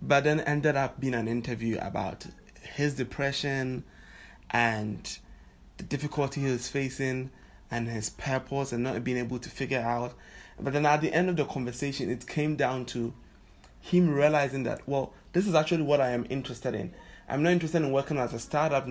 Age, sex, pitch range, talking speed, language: 20-39, male, 120-150 Hz, 185 wpm, English